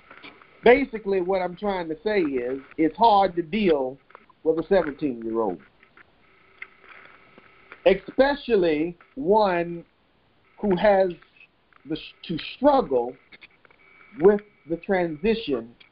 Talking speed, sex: 85 wpm, male